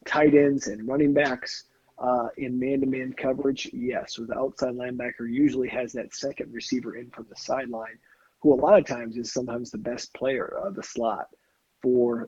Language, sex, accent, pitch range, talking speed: English, male, American, 120-150 Hz, 185 wpm